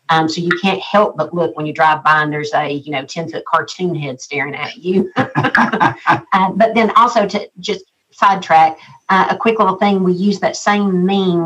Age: 50-69